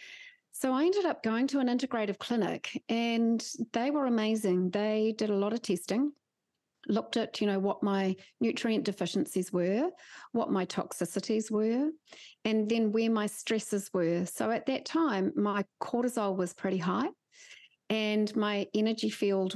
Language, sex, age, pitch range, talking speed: English, female, 40-59, 195-245 Hz, 155 wpm